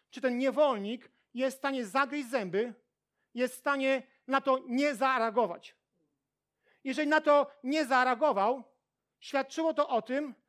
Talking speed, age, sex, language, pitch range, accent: 135 wpm, 40-59, male, Polish, 230-275 Hz, native